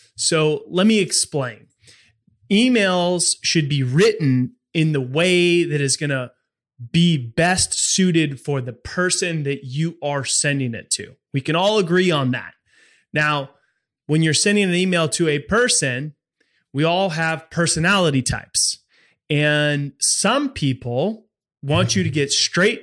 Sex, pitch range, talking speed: male, 140-175 Hz, 140 wpm